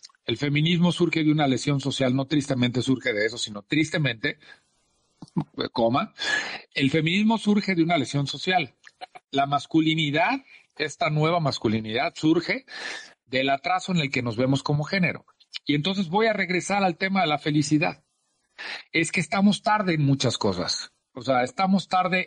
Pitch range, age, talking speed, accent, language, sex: 145-200 Hz, 40-59, 155 wpm, Mexican, Spanish, male